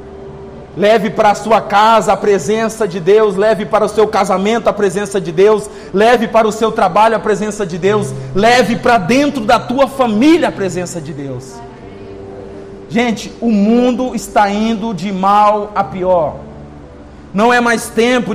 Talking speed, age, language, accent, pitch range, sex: 165 wpm, 40-59, Portuguese, Brazilian, 195-245 Hz, male